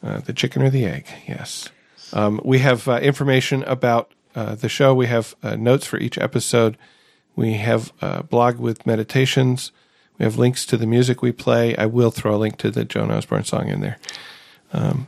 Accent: American